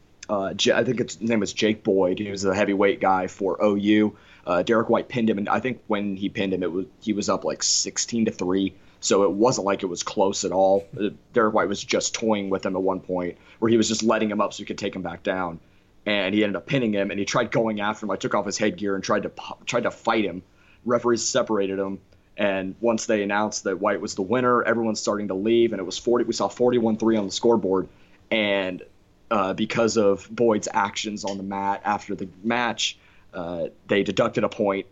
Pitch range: 95-110 Hz